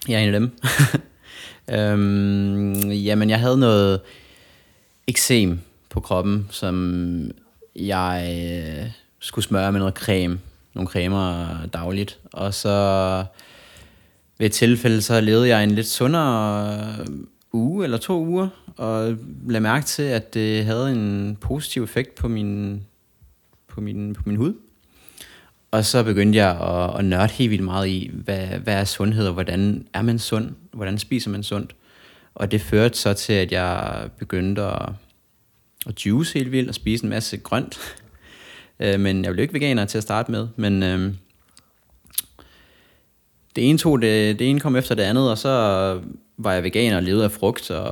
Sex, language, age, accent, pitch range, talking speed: male, Danish, 30-49, native, 95-115 Hz, 160 wpm